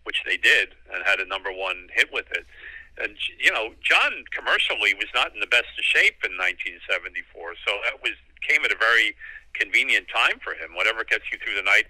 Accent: American